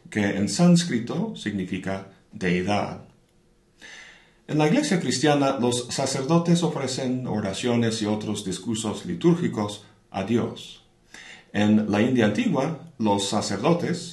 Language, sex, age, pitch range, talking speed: Spanish, male, 40-59, 100-135 Hz, 105 wpm